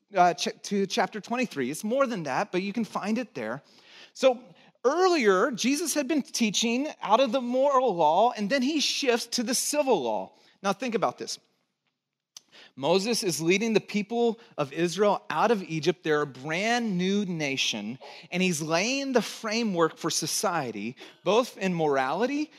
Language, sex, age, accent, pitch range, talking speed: English, male, 30-49, American, 180-235 Hz, 165 wpm